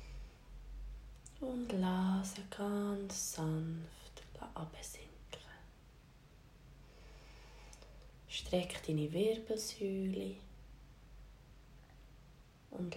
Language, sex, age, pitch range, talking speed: German, female, 20-39, 160-195 Hz, 45 wpm